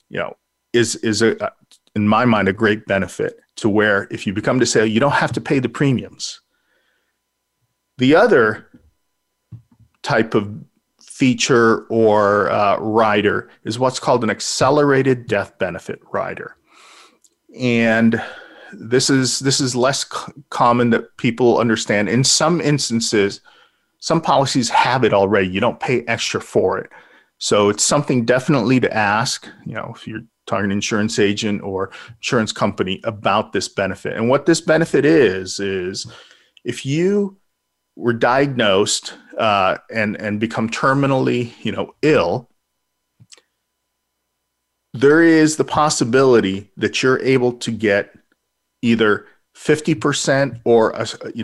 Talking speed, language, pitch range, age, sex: 140 wpm, English, 110-135 Hz, 40-59, male